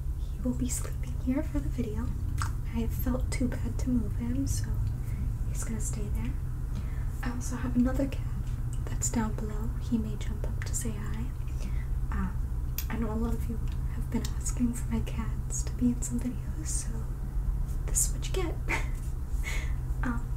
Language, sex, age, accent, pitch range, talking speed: English, female, 10-29, American, 65-105 Hz, 175 wpm